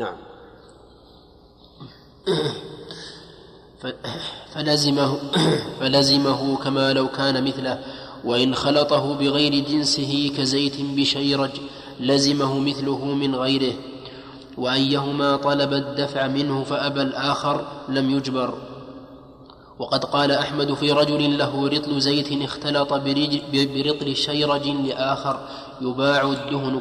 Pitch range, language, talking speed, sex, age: 135-145 Hz, Arabic, 85 wpm, male, 20-39